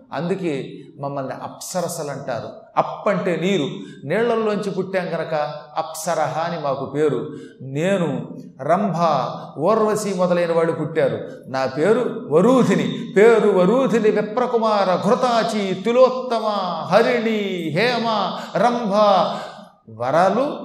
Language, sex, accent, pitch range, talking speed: Telugu, male, native, 155-215 Hz, 90 wpm